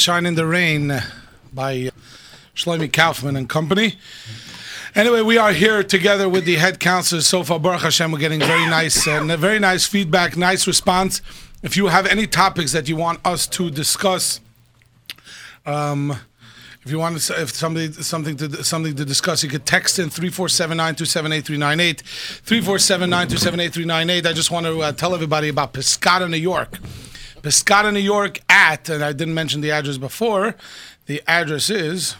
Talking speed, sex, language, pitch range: 160 wpm, male, English, 145-175 Hz